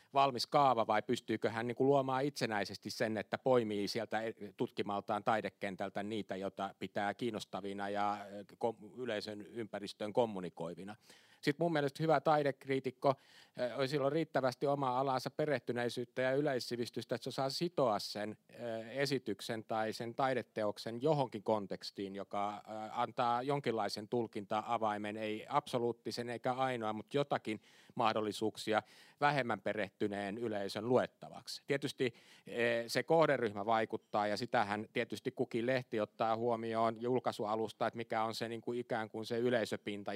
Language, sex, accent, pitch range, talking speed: Finnish, male, native, 105-125 Hz, 125 wpm